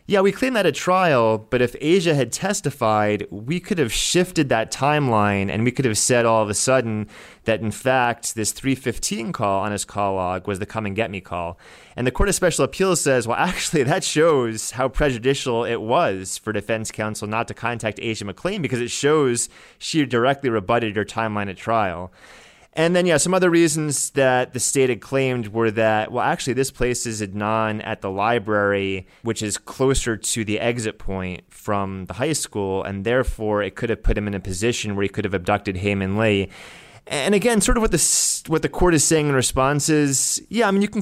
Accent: American